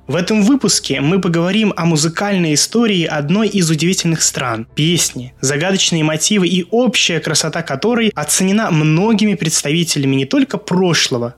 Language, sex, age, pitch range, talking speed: Russian, male, 20-39, 135-185 Hz, 130 wpm